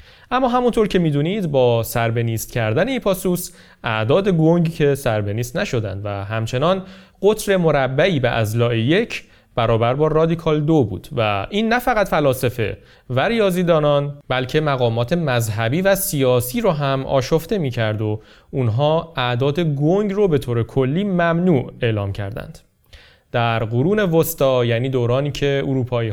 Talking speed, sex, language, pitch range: 135 wpm, male, Persian, 120-165 Hz